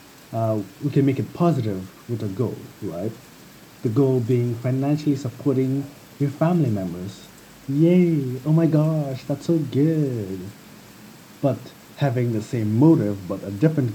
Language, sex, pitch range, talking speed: English, male, 115-150 Hz, 140 wpm